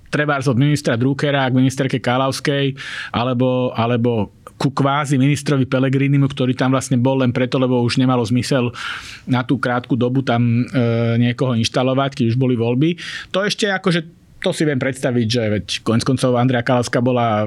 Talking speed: 165 wpm